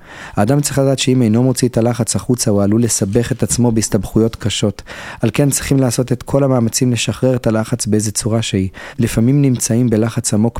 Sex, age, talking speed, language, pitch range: male, 30-49, 185 wpm, Hebrew, 110-130 Hz